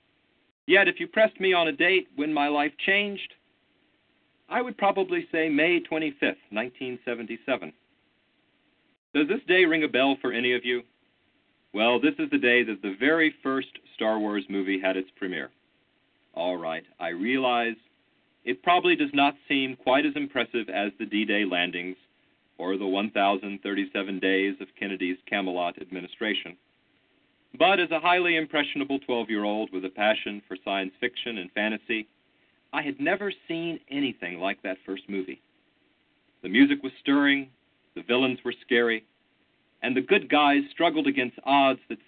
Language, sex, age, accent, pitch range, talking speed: English, male, 40-59, American, 105-160 Hz, 155 wpm